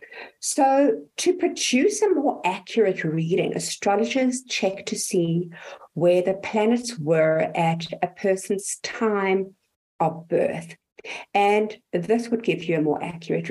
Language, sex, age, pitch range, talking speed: English, female, 50-69, 185-275 Hz, 130 wpm